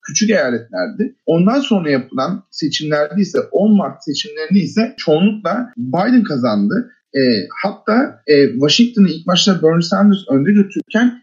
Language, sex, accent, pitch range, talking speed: Turkish, male, native, 145-205 Hz, 130 wpm